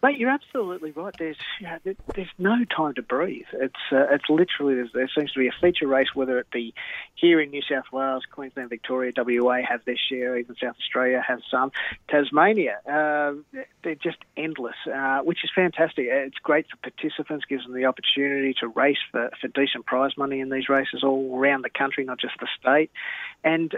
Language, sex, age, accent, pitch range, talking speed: English, male, 30-49, Australian, 125-150 Hz, 195 wpm